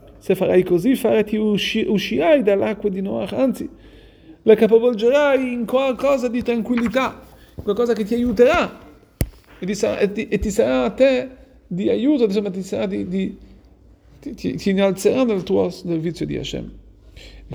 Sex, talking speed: male, 155 wpm